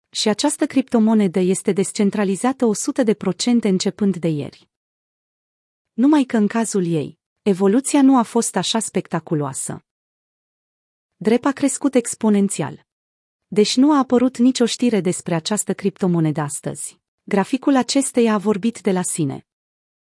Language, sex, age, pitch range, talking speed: Romanian, female, 30-49, 185-245 Hz, 125 wpm